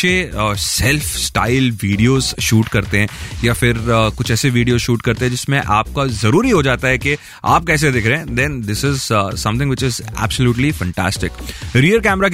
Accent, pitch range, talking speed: native, 105-140 Hz, 120 wpm